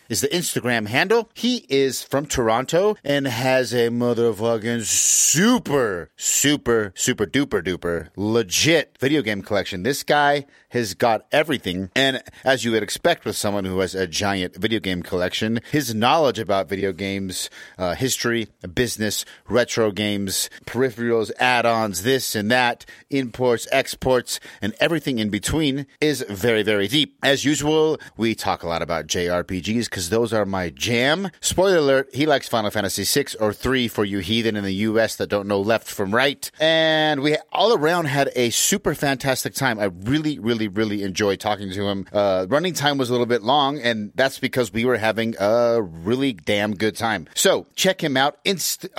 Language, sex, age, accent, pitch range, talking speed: English, male, 30-49, American, 105-135 Hz, 170 wpm